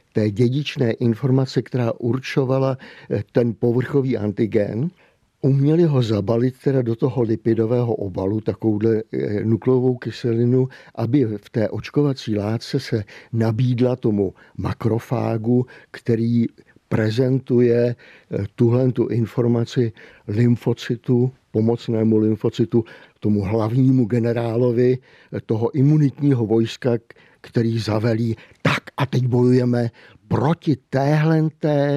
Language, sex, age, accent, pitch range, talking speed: Czech, male, 50-69, native, 110-130 Hz, 95 wpm